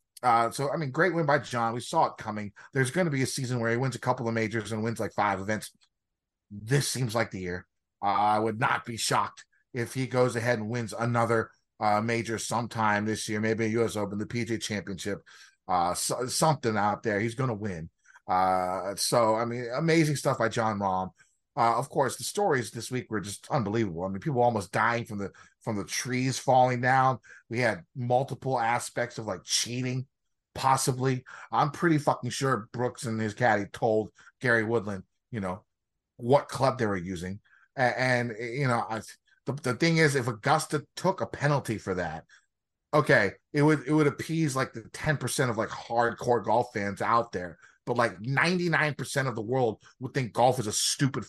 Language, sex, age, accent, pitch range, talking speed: English, male, 30-49, American, 110-130 Hz, 195 wpm